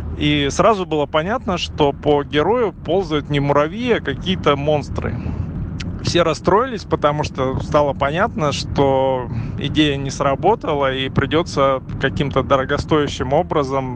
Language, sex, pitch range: Russian, male, 130-150 Hz